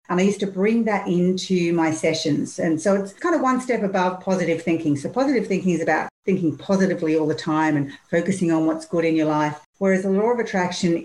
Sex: female